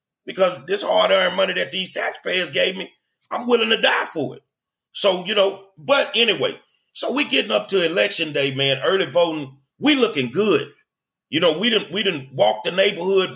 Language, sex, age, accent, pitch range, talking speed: English, male, 30-49, American, 140-205 Hz, 185 wpm